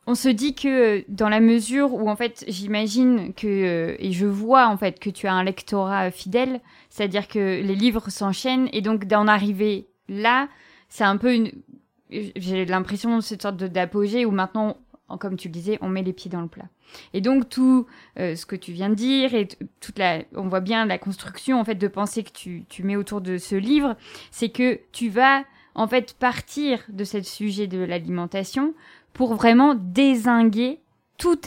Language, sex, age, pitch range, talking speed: French, female, 20-39, 195-255 Hz, 195 wpm